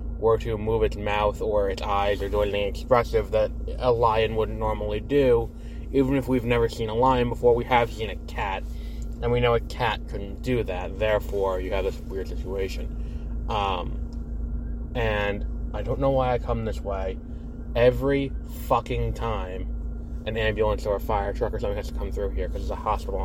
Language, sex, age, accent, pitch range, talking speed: English, male, 20-39, American, 80-120 Hz, 195 wpm